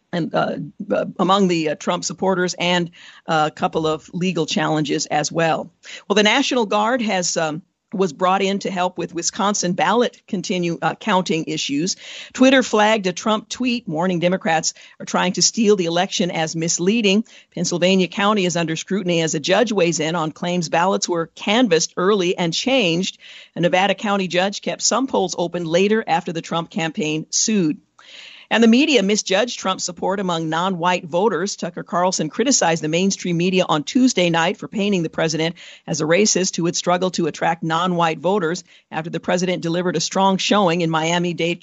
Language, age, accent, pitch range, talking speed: English, 50-69, American, 165-200 Hz, 175 wpm